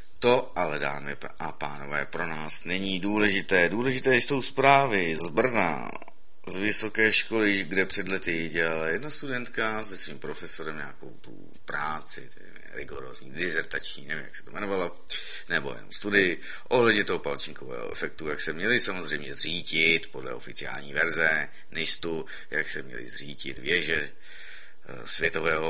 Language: Czech